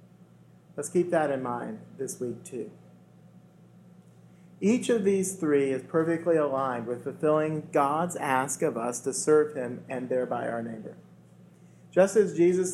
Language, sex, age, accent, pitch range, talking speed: English, male, 40-59, American, 120-165 Hz, 145 wpm